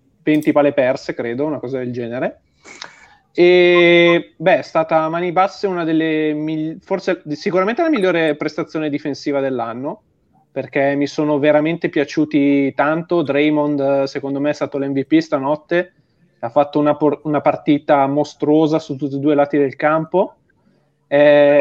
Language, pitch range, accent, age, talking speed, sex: Italian, 140-165 Hz, native, 30-49, 150 wpm, male